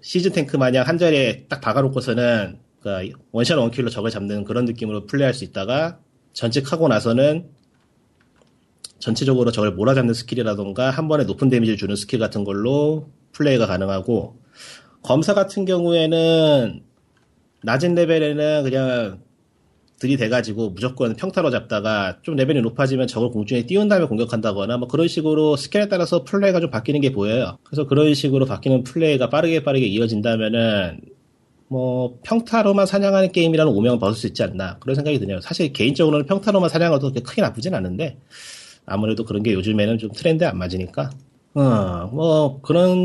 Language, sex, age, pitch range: Korean, male, 30-49, 115-160 Hz